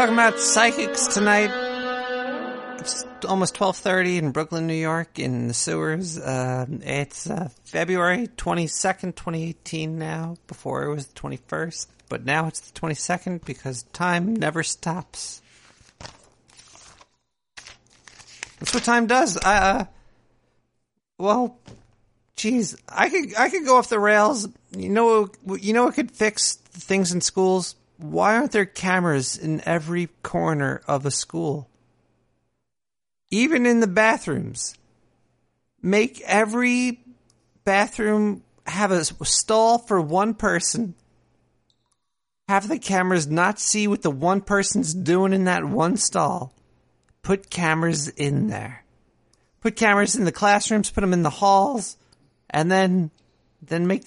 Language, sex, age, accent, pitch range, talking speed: English, male, 40-59, American, 160-215 Hz, 135 wpm